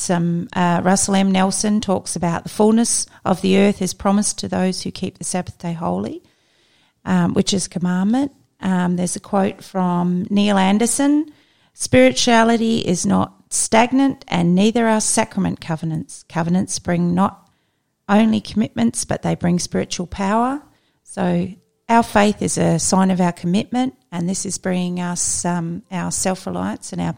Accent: Australian